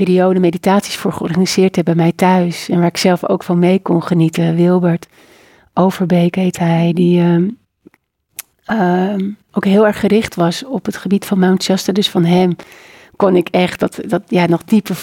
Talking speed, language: 185 wpm, Dutch